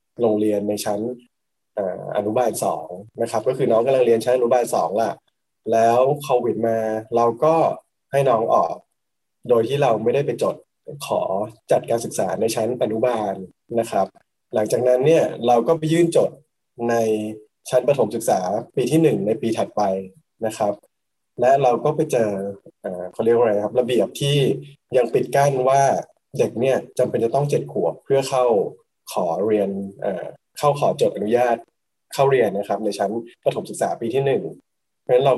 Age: 20-39